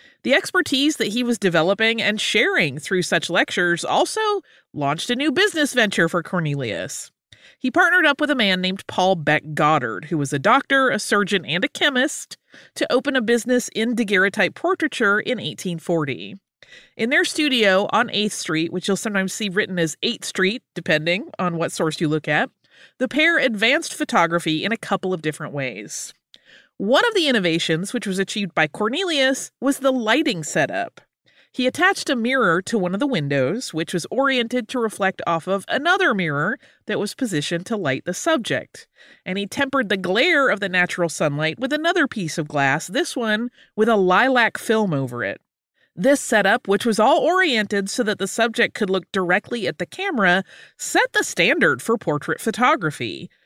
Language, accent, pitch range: English, American, 175-260 Hz